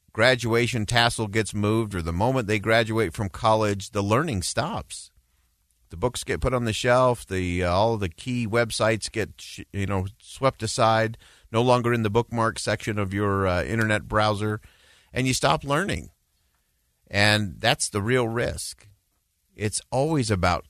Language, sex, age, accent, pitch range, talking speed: English, male, 50-69, American, 90-120 Hz, 160 wpm